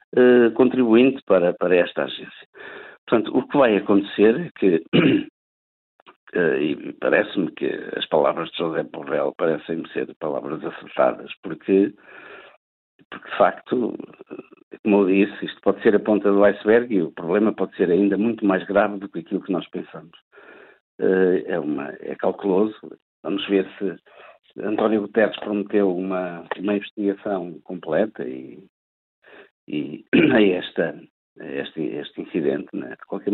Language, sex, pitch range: Portuguese, male, 95-120 Hz